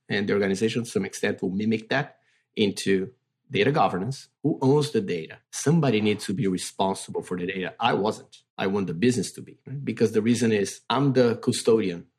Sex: male